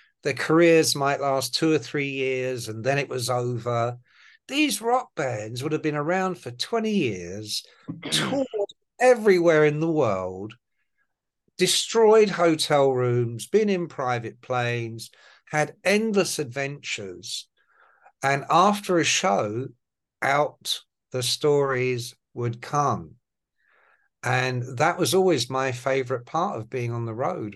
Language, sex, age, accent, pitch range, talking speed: English, male, 60-79, British, 120-170 Hz, 130 wpm